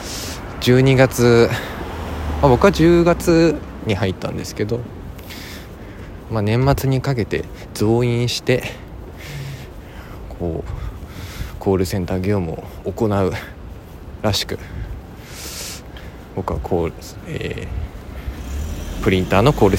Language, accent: Japanese, native